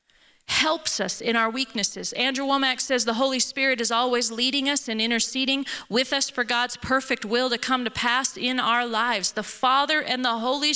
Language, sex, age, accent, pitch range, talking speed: English, female, 40-59, American, 250-310 Hz, 195 wpm